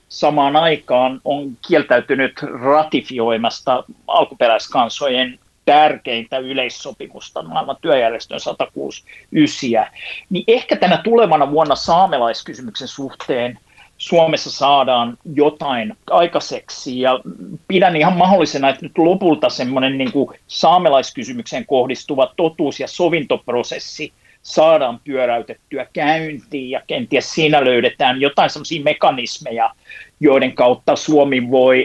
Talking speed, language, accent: 95 wpm, Finnish, native